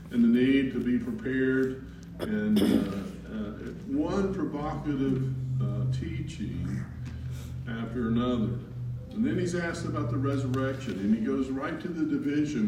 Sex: male